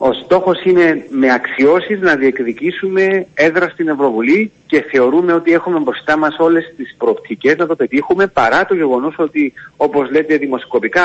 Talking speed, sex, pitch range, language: 160 wpm, male, 135-185 Hz, Greek